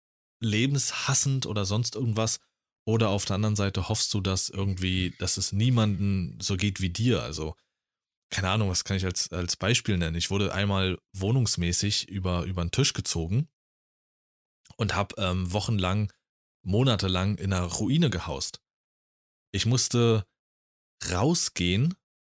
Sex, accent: male, German